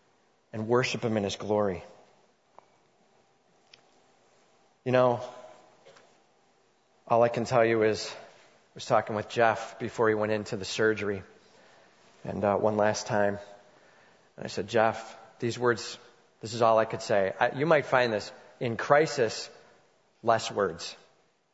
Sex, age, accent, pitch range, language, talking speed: male, 30-49, American, 110-150 Hz, English, 140 wpm